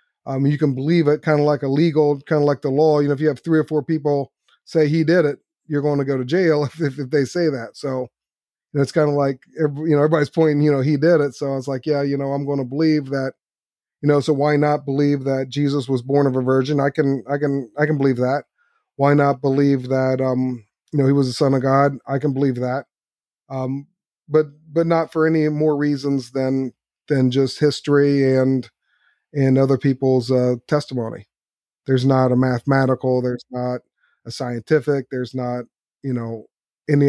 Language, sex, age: English, male, 30-49